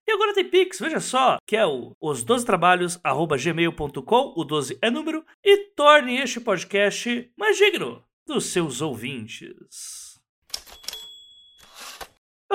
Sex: male